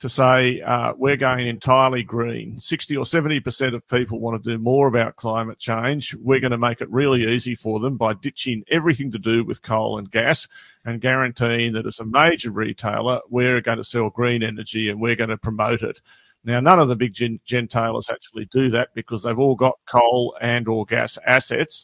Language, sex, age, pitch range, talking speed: English, male, 50-69, 115-130 Hz, 210 wpm